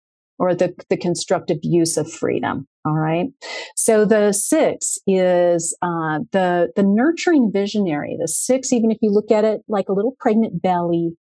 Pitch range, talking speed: 175-220 Hz, 165 wpm